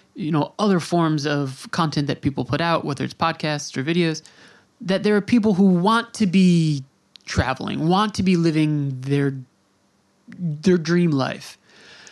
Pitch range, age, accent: 150-185 Hz, 20-39, American